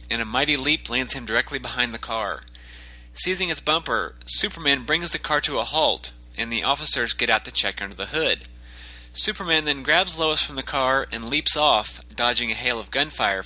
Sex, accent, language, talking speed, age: male, American, English, 200 wpm, 30-49